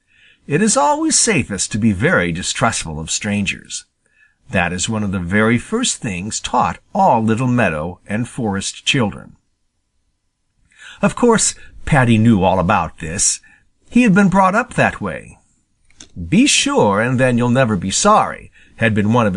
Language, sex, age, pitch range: Japanese, male, 50-69, 100-140 Hz